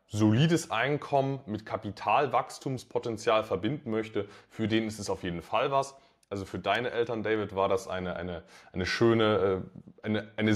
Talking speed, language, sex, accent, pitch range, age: 155 wpm, German, male, German, 105-130 Hz, 20-39